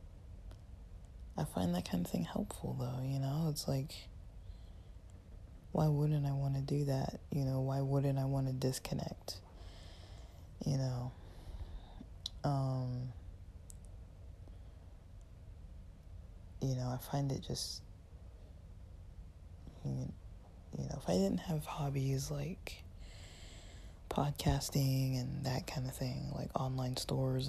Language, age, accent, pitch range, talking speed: English, 20-39, American, 90-135 Hz, 115 wpm